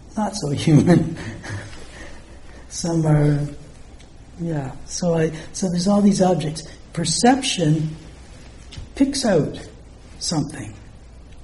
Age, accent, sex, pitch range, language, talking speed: 60-79, American, male, 150-180 Hz, English, 90 wpm